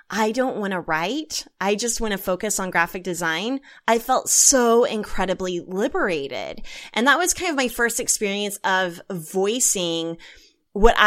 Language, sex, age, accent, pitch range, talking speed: English, female, 20-39, American, 180-225 Hz, 155 wpm